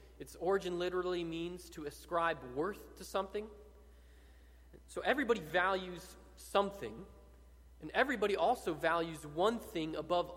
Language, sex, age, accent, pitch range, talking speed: English, male, 30-49, American, 140-195 Hz, 115 wpm